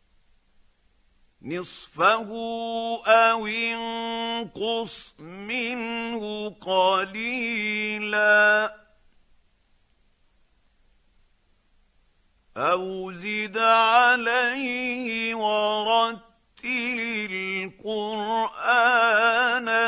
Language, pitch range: Arabic, 190-230 Hz